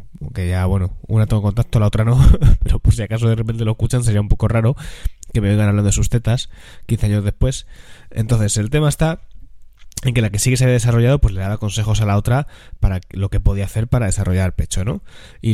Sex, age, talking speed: male, 20-39, 230 wpm